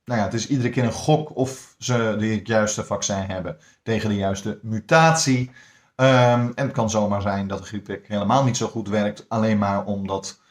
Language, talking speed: Dutch, 200 wpm